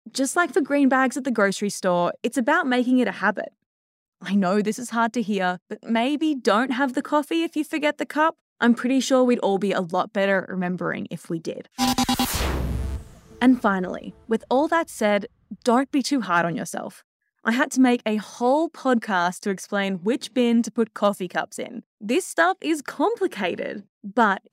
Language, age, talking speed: English, 20-39, 195 wpm